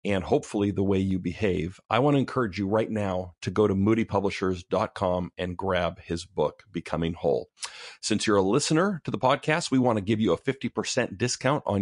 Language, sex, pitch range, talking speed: English, male, 95-115 Hz, 200 wpm